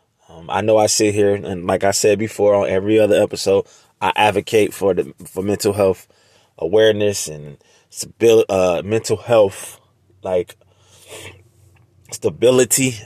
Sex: male